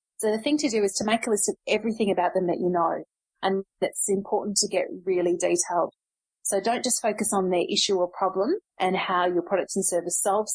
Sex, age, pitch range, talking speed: female, 30-49, 180-210 Hz, 230 wpm